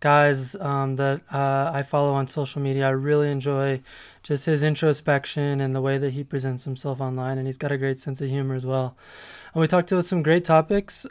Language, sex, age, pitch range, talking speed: English, male, 20-39, 140-175 Hz, 215 wpm